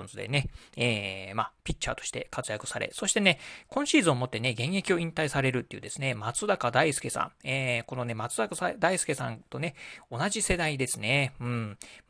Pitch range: 120-190 Hz